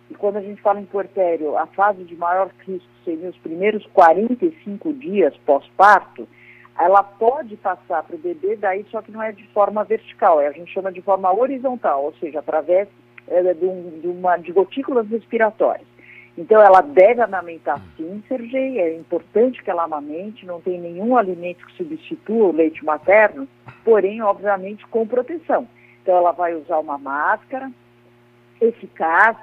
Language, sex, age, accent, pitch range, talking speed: Portuguese, female, 50-69, Brazilian, 170-225 Hz, 155 wpm